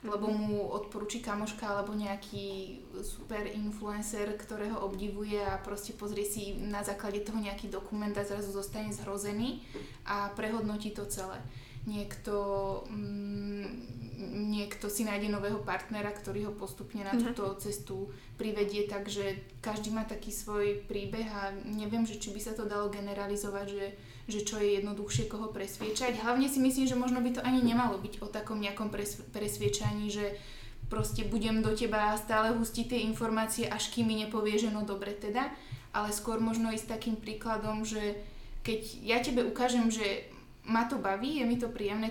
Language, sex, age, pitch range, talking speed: Slovak, female, 20-39, 205-225 Hz, 160 wpm